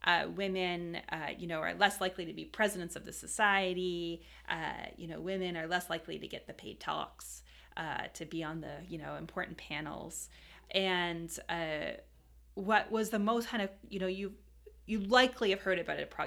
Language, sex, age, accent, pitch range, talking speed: English, female, 30-49, American, 165-200 Hz, 190 wpm